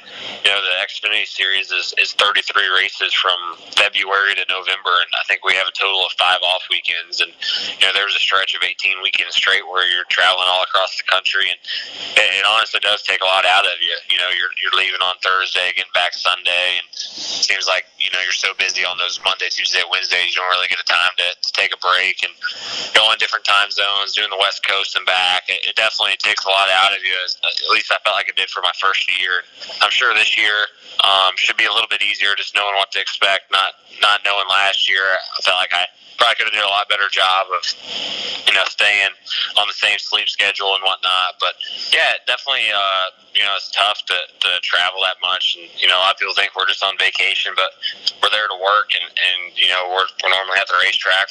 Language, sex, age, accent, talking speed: English, male, 20-39, American, 235 wpm